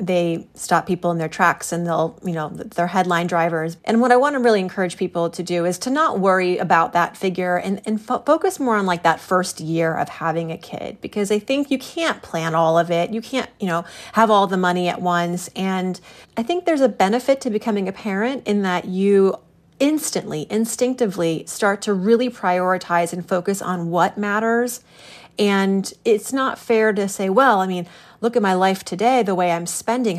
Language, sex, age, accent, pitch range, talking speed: English, female, 30-49, American, 180-220 Hz, 205 wpm